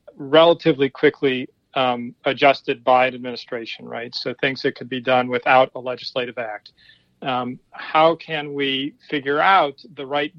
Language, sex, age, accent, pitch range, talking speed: English, male, 40-59, American, 130-145 Hz, 150 wpm